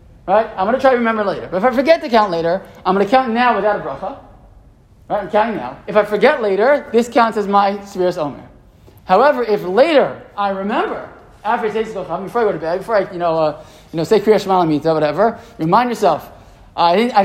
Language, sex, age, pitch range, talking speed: English, male, 20-39, 175-225 Hz, 205 wpm